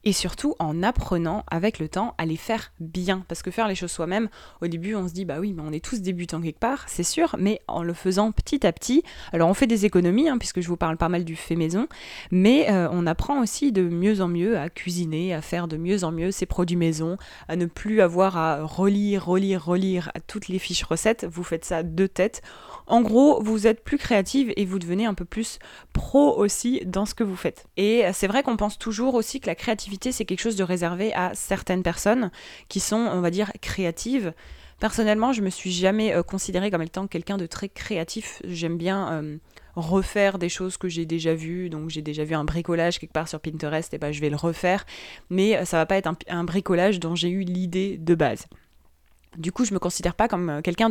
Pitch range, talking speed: 170-210 Hz, 235 wpm